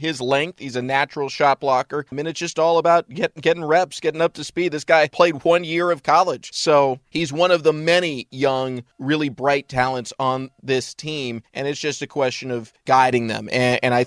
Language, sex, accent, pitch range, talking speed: English, male, American, 120-145 Hz, 220 wpm